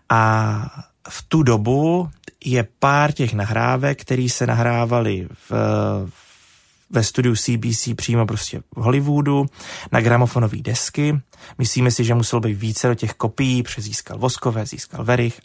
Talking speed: 140 wpm